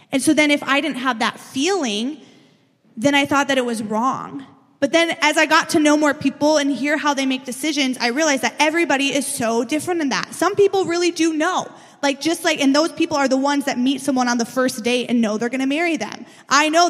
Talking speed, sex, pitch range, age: 250 wpm, female, 245-300 Hz, 20-39